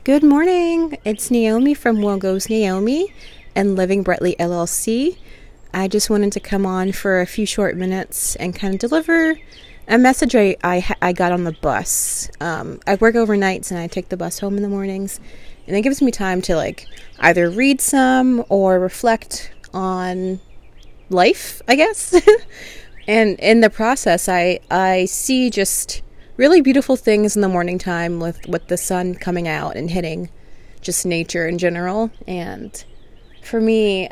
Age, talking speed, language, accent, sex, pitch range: 30-49, 165 wpm, English, American, female, 175-225 Hz